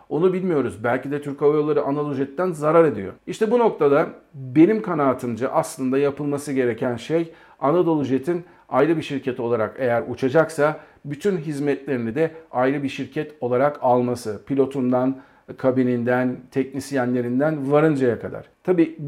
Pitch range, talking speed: 130-165 Hz, 125 wpm